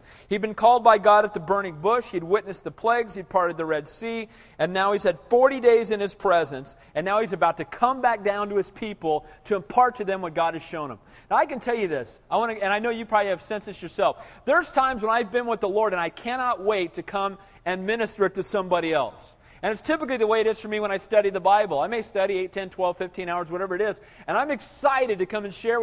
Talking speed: 265 wpm